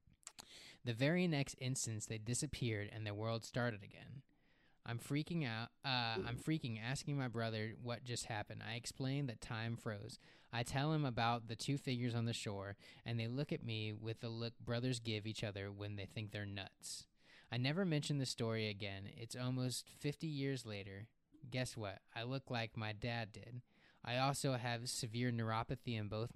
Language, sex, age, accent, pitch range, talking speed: English, male, 20-39, American, 105-125 Hz, 185 wpm